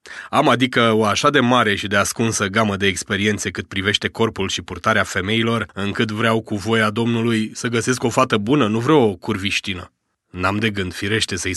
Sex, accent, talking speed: male, native, 190 wpm